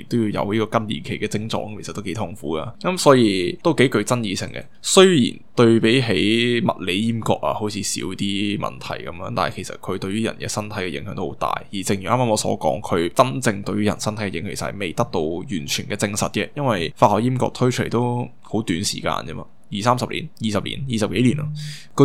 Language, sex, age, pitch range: Chinese, male, 10-29, 105-125 Hz